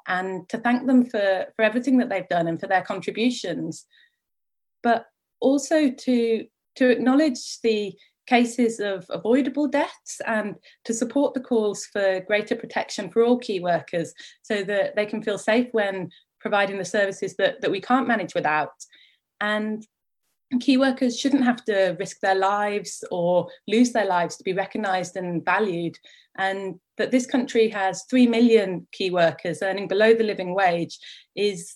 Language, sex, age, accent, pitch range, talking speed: English, female, 20-39, British, 190-240 Hz, 160 wpm